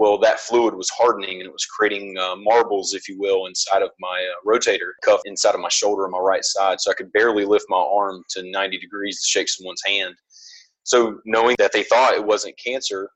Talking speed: 230 wpm